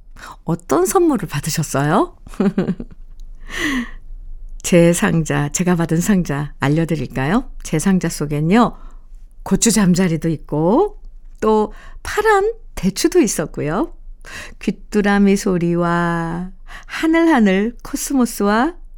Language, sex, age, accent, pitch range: Korean, female, 50-69, native, 165-230 Hz